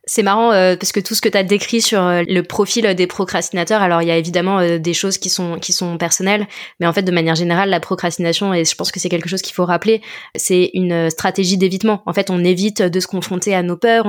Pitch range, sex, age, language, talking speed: 180-210 Hz, female, 20-39, French, 270 wpm